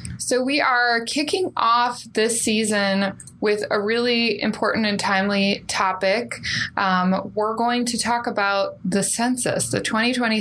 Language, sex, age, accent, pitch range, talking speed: English, female, 20-39, American, 185-230 Hz, 140 wpm